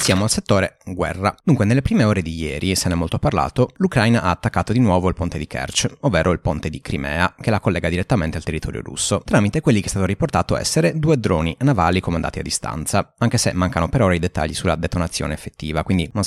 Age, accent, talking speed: 30-49, native, 230 wpm